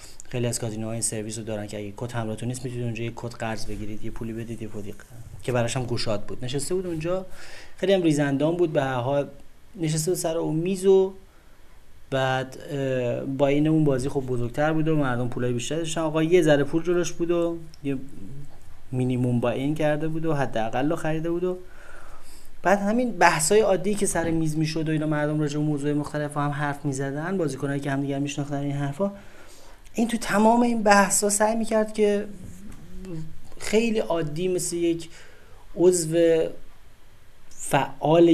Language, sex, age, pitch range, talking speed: Persian, male, 30-49, 125-175 Hz, 170 wpm